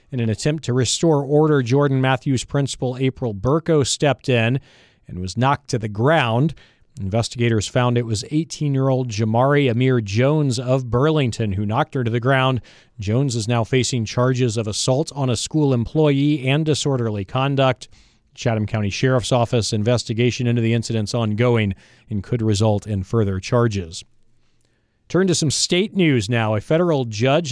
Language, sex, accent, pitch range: English, male, American, 110-135 Hz